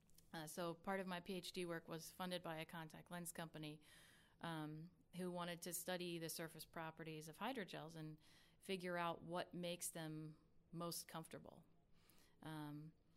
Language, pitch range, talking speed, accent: English, 155-180 Hz, 145 wpm, American